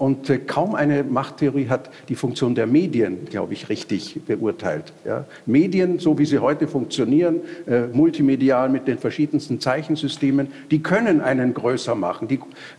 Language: German